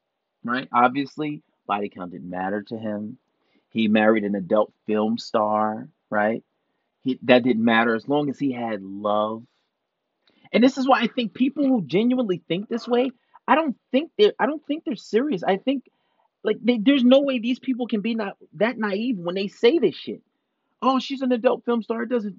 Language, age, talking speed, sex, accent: English, 30-49, 195 wpm, male, American